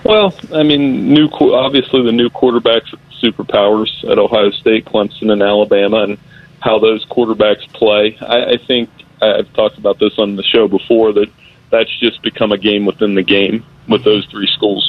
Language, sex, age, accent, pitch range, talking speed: English, male, 40-59, American, 105-145 Hz, 175 wpm